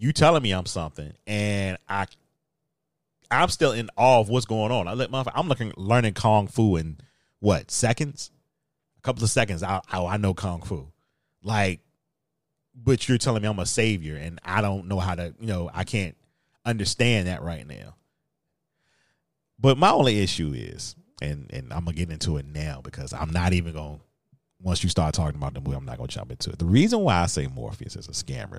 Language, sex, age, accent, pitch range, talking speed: English, male, 30-49, American, 85-120 Hz, 200 wpm